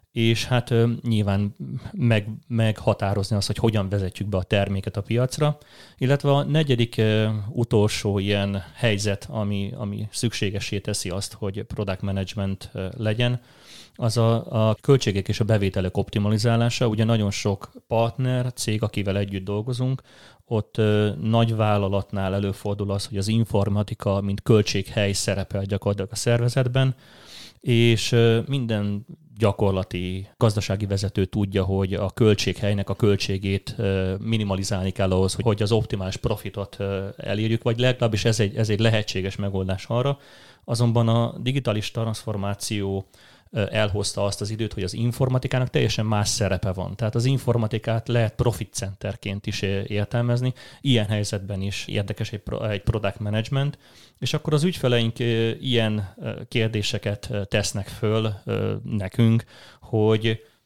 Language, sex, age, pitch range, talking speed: Hungarian, male, 30-49, 100-115 Hz, 130 wpm